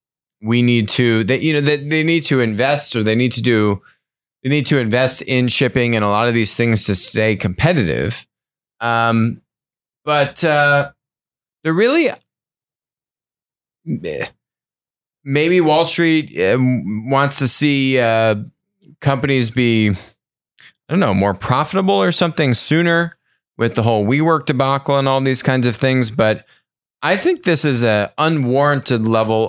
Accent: American